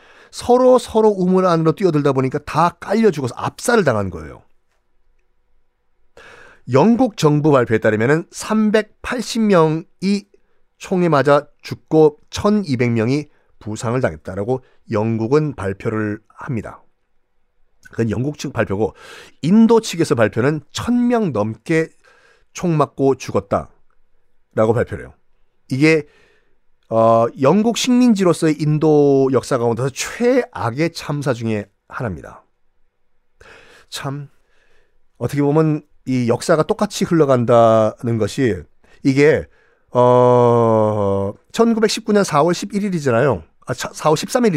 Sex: male